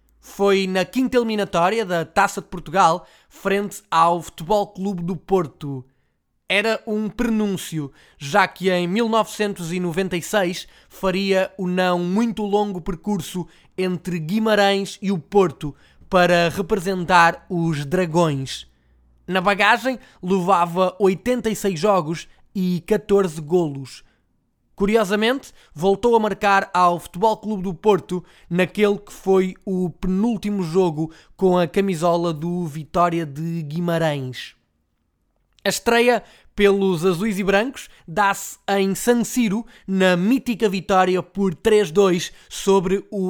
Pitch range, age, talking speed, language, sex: 175-205 Hz, 20-39, 115 wpm, Portuguese, male